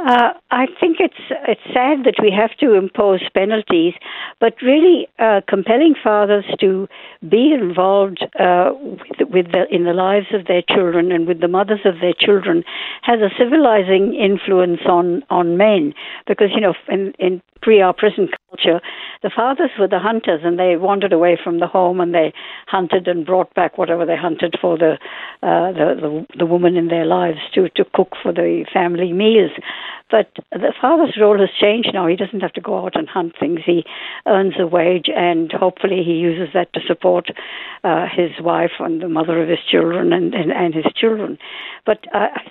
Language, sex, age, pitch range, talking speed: English, female, 60-79, 175-215 Hz, 190 wpm